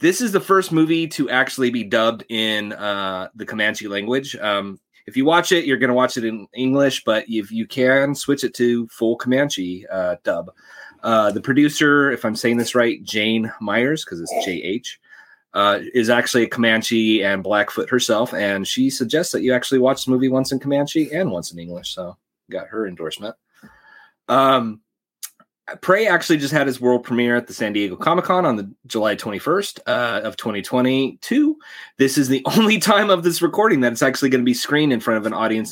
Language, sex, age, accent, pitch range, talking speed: English, male, 30-49, American, 105-140 Hz, 200 wpm